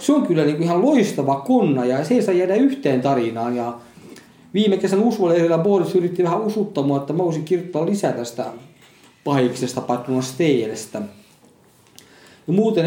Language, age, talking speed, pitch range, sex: Finnish, 40-59, 145 wpm, 135-185 Hz, male